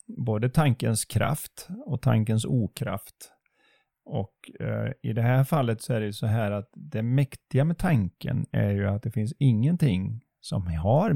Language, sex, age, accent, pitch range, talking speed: Swedish, male, 30-49, native, 110-145 Hz, 160 wpm